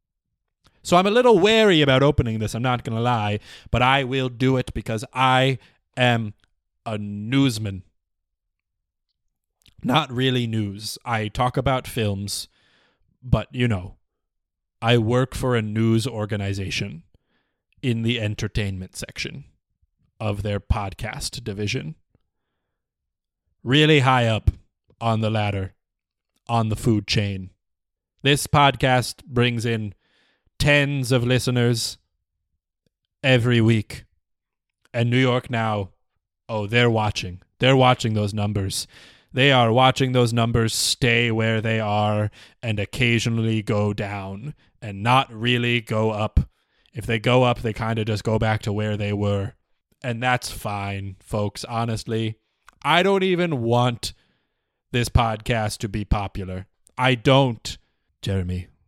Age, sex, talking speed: 30-49, male, 130 wpm